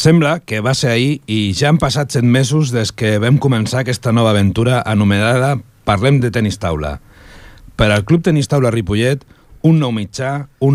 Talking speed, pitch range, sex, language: 185 wpm, 105-135 Hz, male, Italian